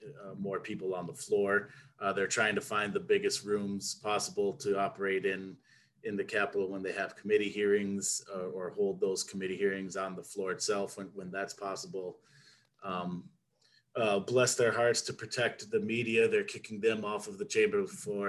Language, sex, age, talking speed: English, male, 30-49, 185 wpm